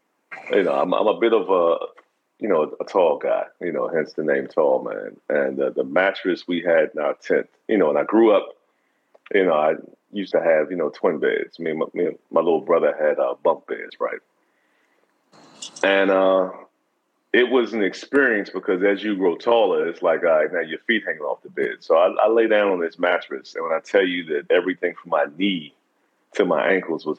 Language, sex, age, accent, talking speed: English, male, 30-49, American, 225 wpm